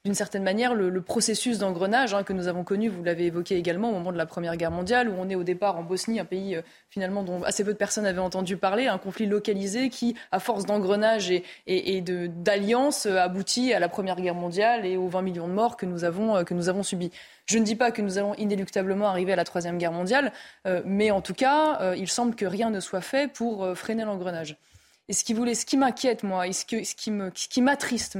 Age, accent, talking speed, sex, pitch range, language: 20-39, French, 255 wpm, female, 185-235 Hz, French